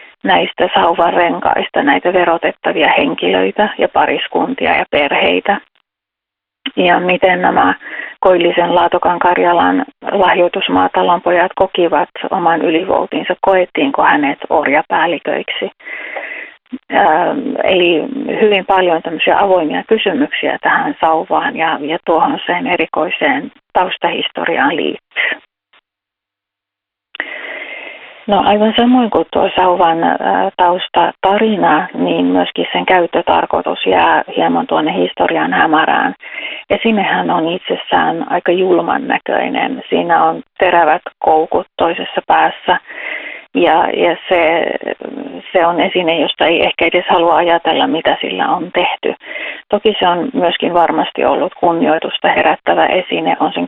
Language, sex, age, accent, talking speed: Finnish, female, 30-49, native, 105 wpm